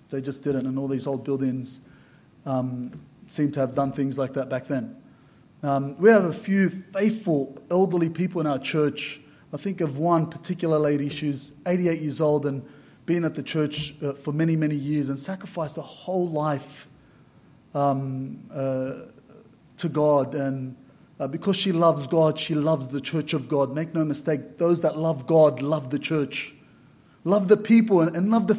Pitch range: 145-175 Hz